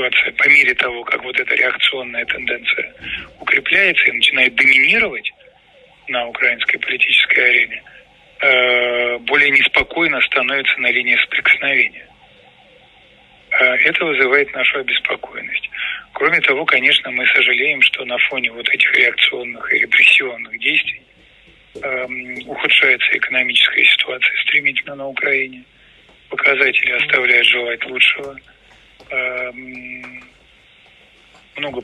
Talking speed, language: 95 wpm, Russian